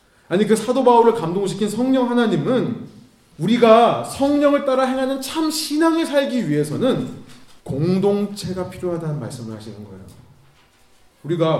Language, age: Korean, 30-49